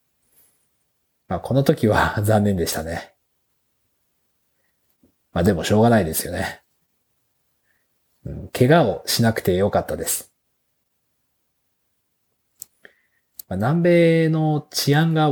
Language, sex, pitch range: Japanese, male, 100-140 Hz